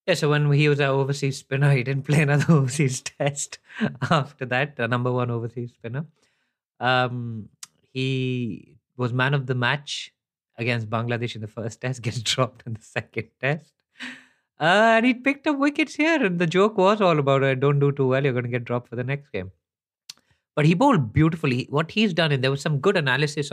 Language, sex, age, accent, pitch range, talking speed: English, male, 20-39, Indian, 120-150 Hz, 205 wpm